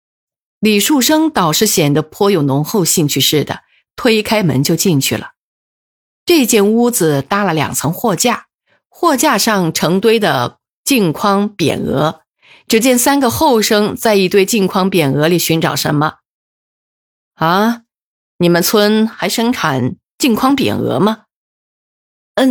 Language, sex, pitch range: Chinese, female, 165-240 Hz